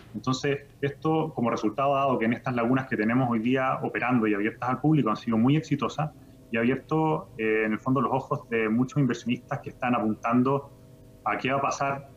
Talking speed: 200 wpm